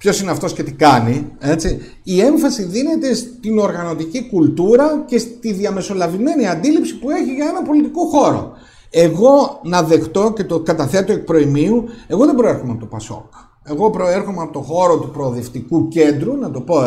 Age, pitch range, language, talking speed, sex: 50-69, 150-245 Hz, Greek, 170 wpm, male